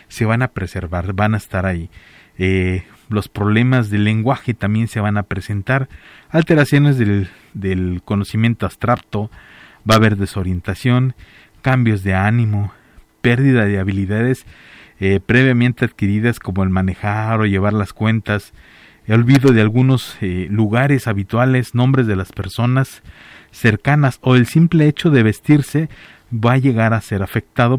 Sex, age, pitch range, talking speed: male, 40-59, 100-125 Hz, 145 wpm